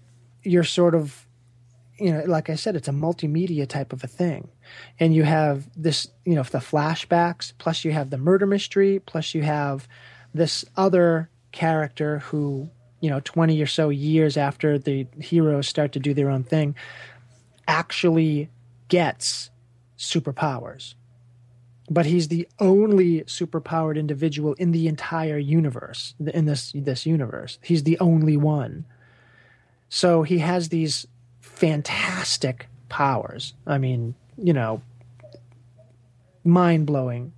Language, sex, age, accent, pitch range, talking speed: English, male, 30-49, American, 125-165 Hz, 135 wpm